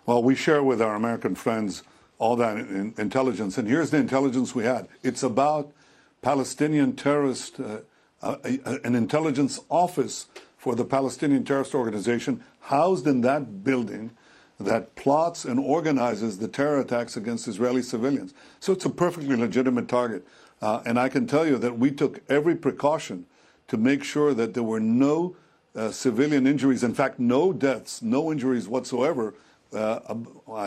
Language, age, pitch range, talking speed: English, 60-79, 120-165 Hz, 150 wpm